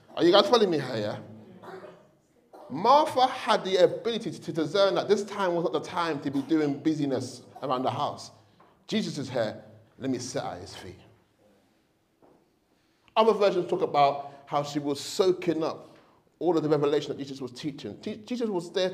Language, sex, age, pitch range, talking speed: English, male, 30-49, 135-190 Hz, 175 wpm